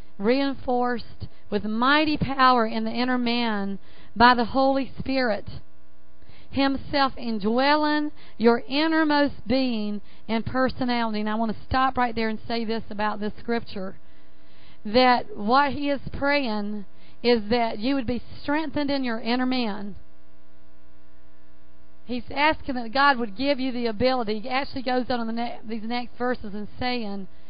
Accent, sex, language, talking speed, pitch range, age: American, female, English, 150 wpm, 205-260 Hz, 40-59